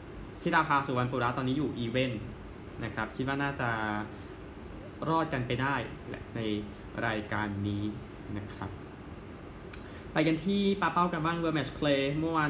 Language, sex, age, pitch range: Thai, male, 20-39, 105-140 Hz